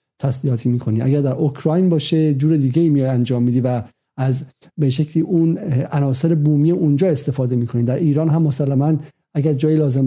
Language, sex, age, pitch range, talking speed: Persian, male, 50-69, 140-170 Hz, 165 wpm